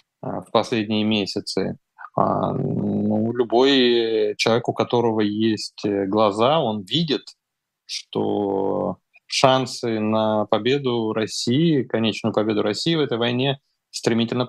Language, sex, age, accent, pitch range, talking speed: Russian, male, 20-39, native, 105-130 Hz, 100 wpm